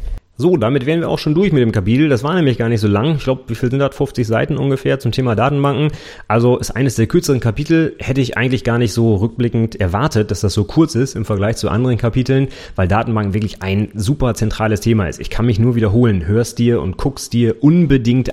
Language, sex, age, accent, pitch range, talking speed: German, male, 30-49, German, 95-125 Hz, 235 wpm